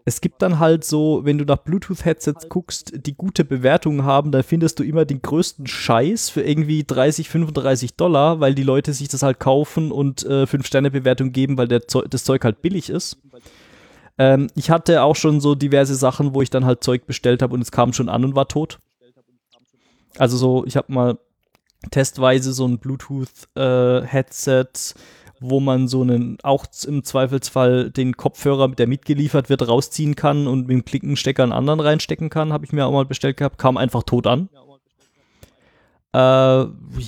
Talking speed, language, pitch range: 190 wpm, German, 130-150 Hz